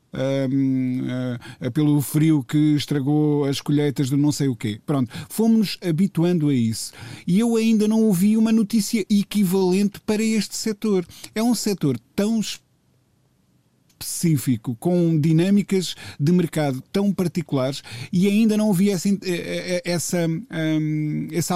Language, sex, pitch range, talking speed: Portuguese, male, 135-175 Hz, 135 wpm